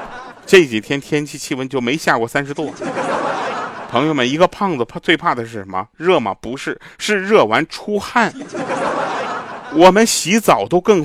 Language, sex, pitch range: Chinese, male, 115-180 Hz